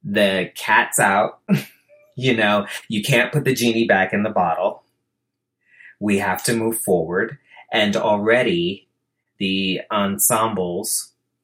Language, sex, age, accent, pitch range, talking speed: English, male, 30-49, American, 100-145 Hz, 120 wpm